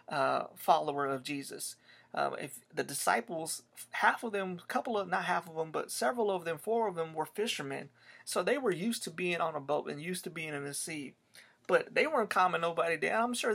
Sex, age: male, 30-49